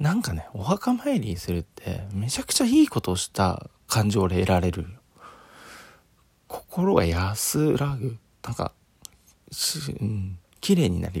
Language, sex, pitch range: Japanese, male, 90-120 Hz